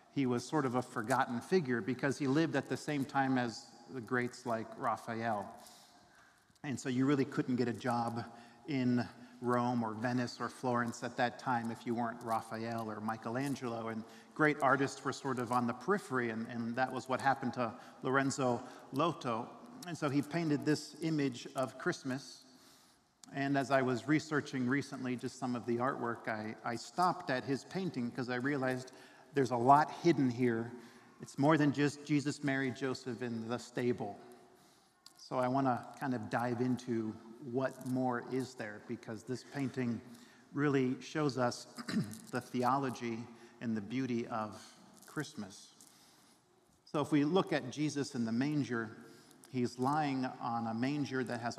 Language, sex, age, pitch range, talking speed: English, male, 50-69, 120-135 Hz, 165 wpm